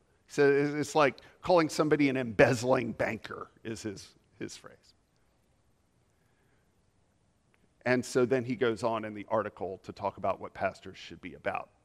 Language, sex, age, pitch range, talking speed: English, male, 50-69, 120-165 Hz, 145 wpm